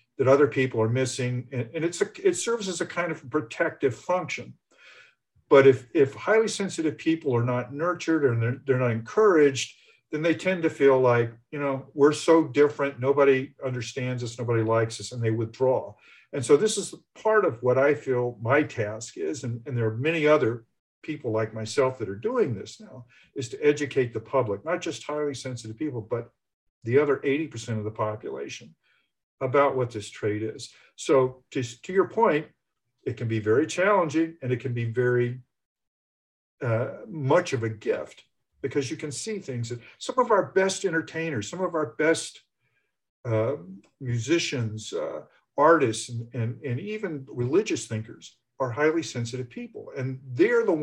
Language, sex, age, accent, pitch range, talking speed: English, male, 50-69, American, 120-155 Hz, 175 wpm